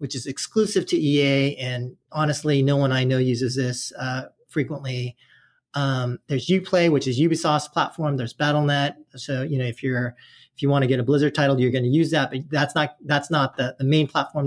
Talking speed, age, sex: 210 wpm, 40-59, male